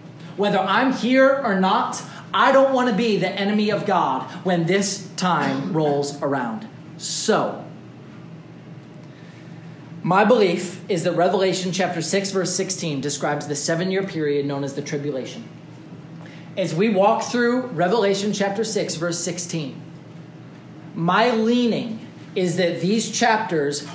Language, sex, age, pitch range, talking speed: English, male, 30-49, 160-215 Hz, 135 wpm